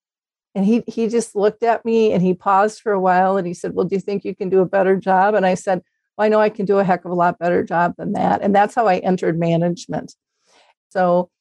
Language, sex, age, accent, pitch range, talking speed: English, female, 40-59, American, 180-205 Hz, 270 wpm